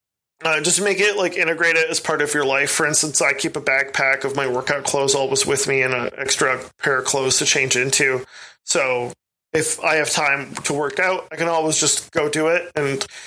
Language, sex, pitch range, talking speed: English, male, 135-170 Hz, 225 wpm